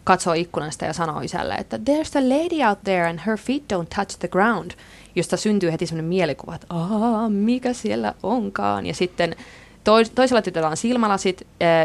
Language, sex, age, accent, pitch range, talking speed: Finnish, female, 20-39, native, 160-195 Hz, 185 wpm